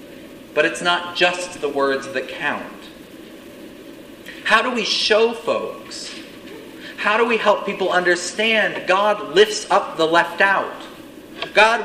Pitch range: 190-270 Hz